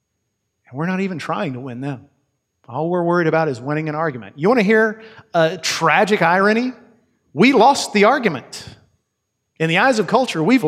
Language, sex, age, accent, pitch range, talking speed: English, male, 40-59, American, 130-160 Hz, 185 wpm